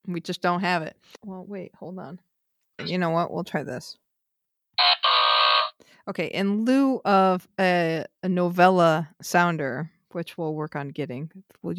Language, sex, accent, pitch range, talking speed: English, female, American, 160-195 Hz, 150 wpm